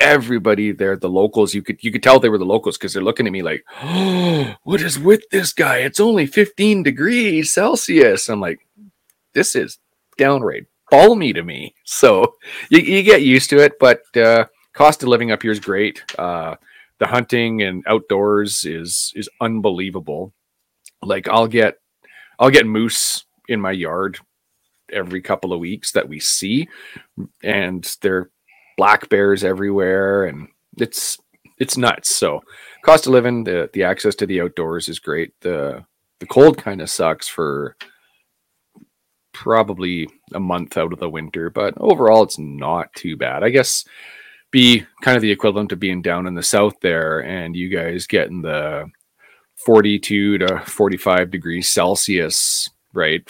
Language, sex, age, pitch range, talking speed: English, male, 30-49, 95-145 Hz, 160 wpm